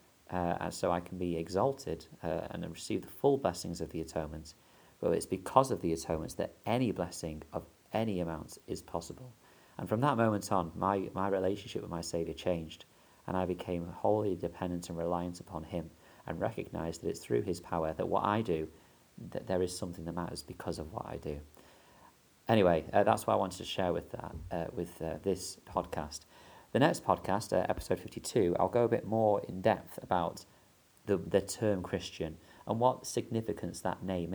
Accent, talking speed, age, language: British, 195 wpm, 40-59, English